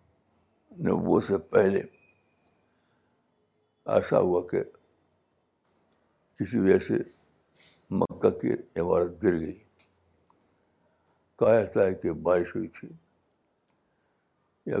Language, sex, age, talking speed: Urdu, male, 60-79, 90 wpm